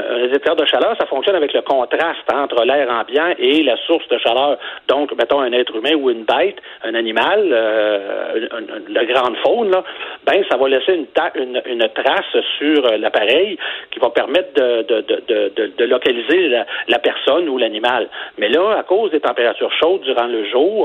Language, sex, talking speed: French, male, 200 wpm